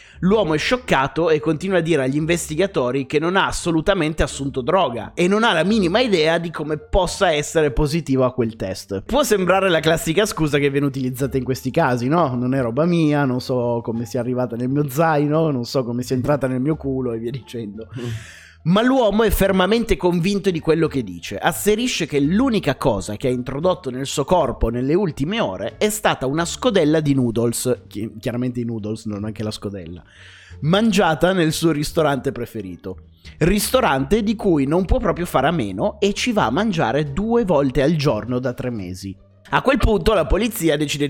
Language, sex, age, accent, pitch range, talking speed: Italian, male, 30-49, native, 125-180 Hz, 190 wpm